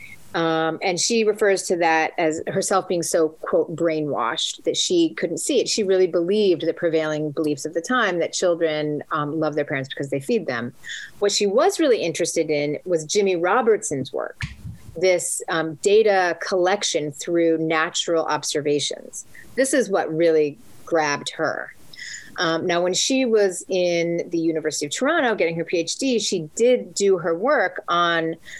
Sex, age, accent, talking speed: female, 30-49, American, 165 wpm